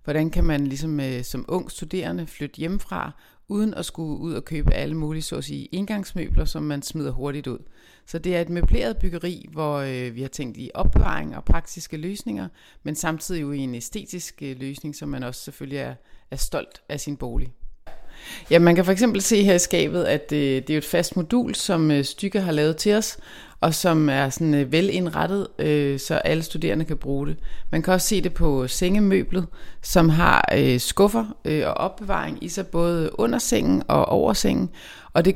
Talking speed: 185 wpm